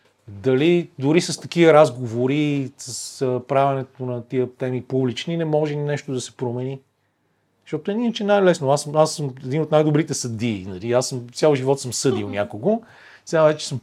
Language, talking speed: Bulgarian, 170 wpm